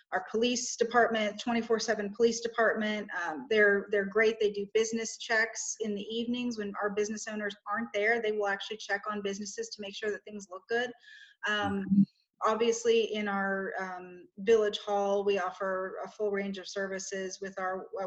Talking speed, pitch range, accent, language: 175 wpm, 200-230 Hz, American, English